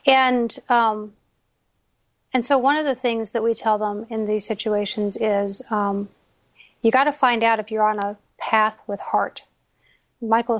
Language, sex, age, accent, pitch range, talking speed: English, female, 40-59, American, 205-240 Hz, 170 wpm